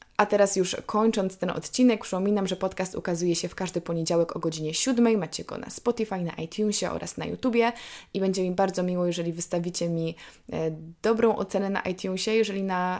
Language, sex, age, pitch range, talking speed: Polish, female, 20-39, 170-200 Hz, 185 wpm